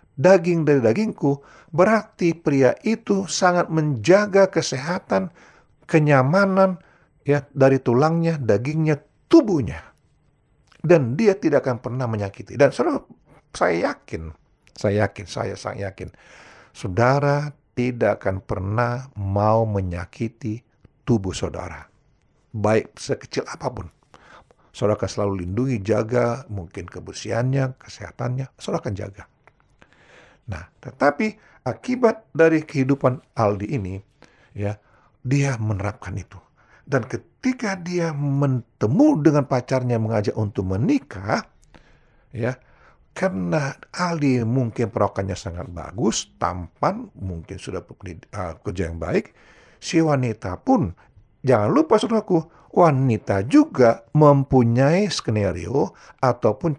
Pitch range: 105-155 Hz